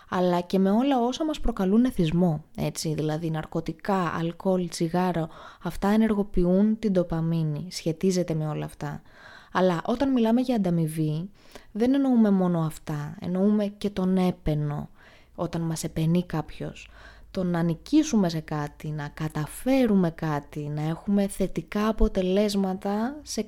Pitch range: 165-220 Hz